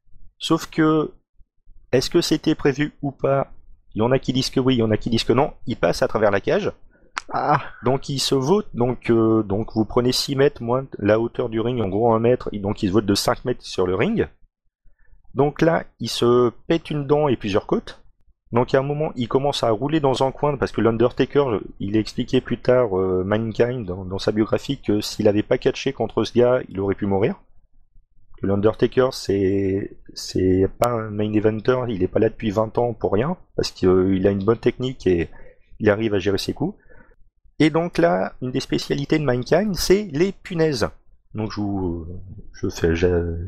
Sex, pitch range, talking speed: male, 105-145 Hz, 215 wpm